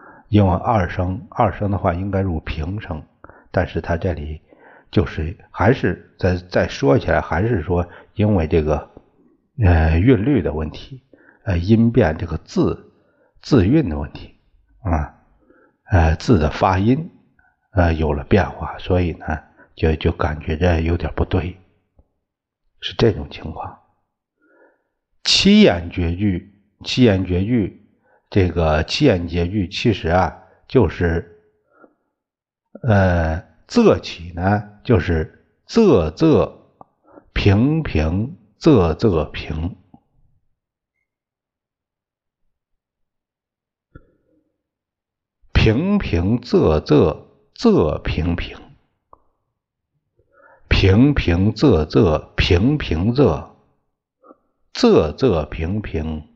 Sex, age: male, 60-79